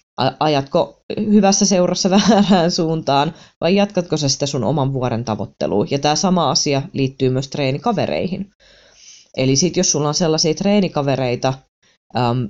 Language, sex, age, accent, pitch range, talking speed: Finnish, female, 20-39, native, 130-165 Hz, 130 wpm